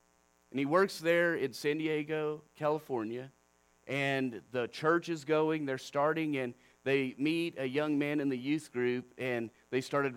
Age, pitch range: 40-59, 115-160 Hz